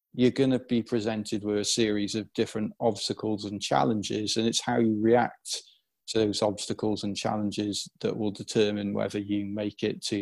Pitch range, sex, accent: 105-120 Hz, male, British